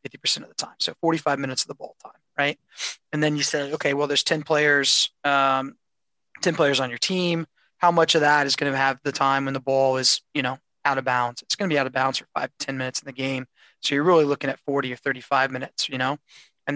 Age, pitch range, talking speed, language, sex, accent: 20-39, 130-145 Hz, 255 wpm, English, male, American